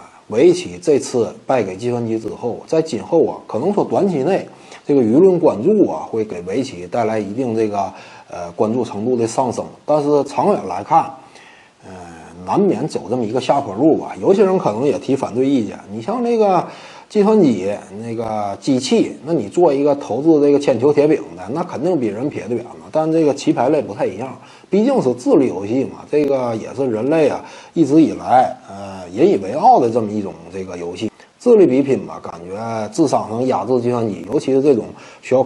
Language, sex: Chinese, male